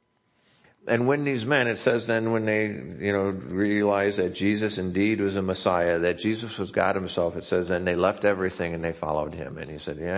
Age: 50-69